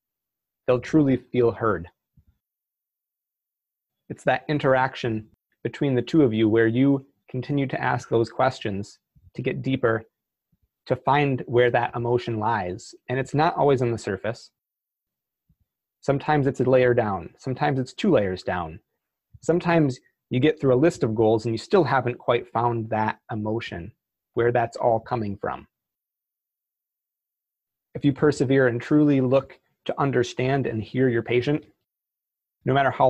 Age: 30-49